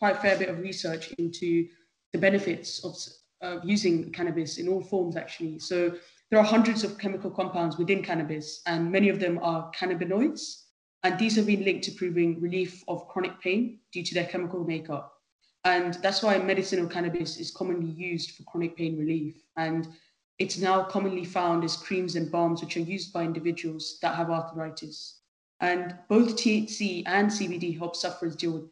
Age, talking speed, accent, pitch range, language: 20-39, 180 wpm, British, 165-190 Hz, English